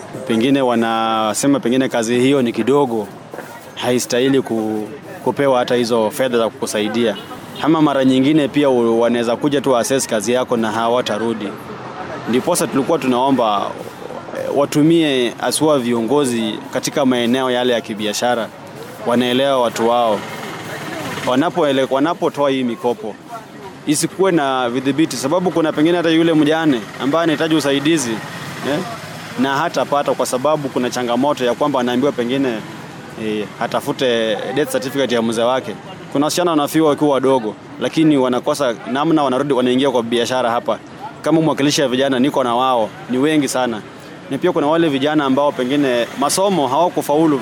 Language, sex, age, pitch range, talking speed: Swahili, male, 30-49, 120-150 Hz, 140 wpm